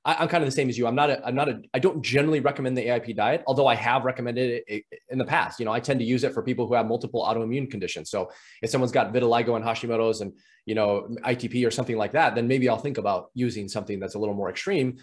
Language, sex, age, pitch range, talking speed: English, male, 20-39, 115-140 Hz, 270 wpm